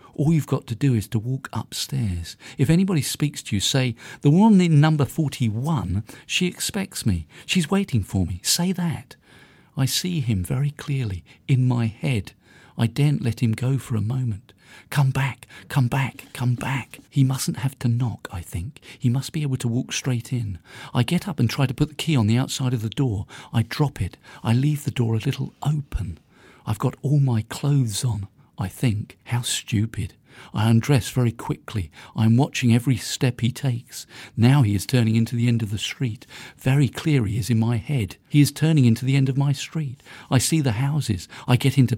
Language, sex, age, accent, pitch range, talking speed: French, male, 50-69, British, 110-140 Hz, 205 wpm